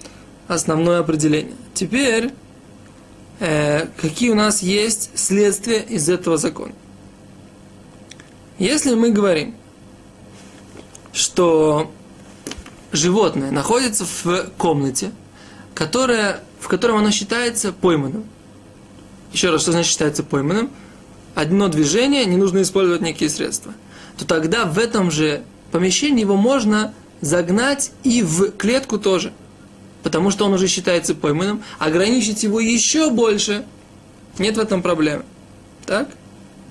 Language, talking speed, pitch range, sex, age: Russian, 110 wpm, 155-215 Hz, male, 20-39